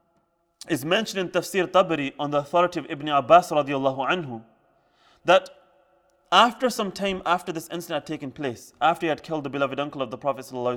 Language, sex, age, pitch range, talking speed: English, male, 20-39, 140-175 Hz, 180 wpm